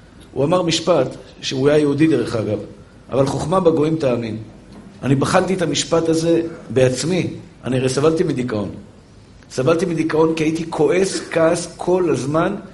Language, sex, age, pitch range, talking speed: Hebrew, male, 50-69, 125-170 Hz, 140 wpm